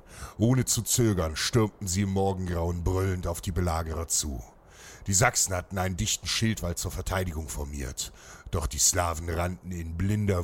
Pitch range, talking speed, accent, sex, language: 80-95 Hz, 155 wpm, German, male, German